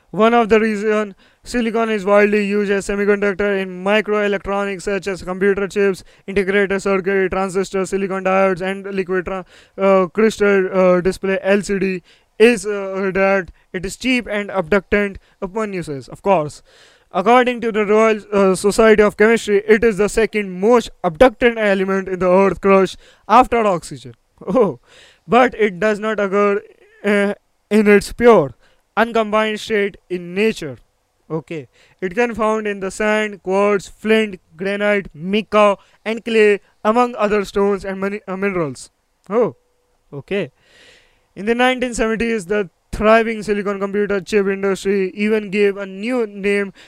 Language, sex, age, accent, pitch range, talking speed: English, male, 20-39, Indian, 195-220 Hz, 140 wpm